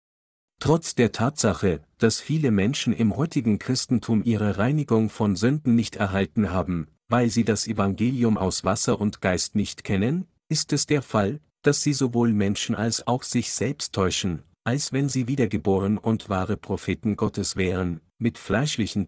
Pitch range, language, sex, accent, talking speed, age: 100-125 Hz, German, male, German, 155 wpm, 50-69